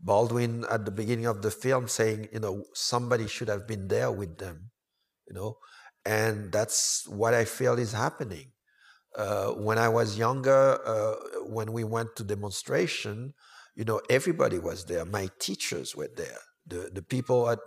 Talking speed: 170 wpm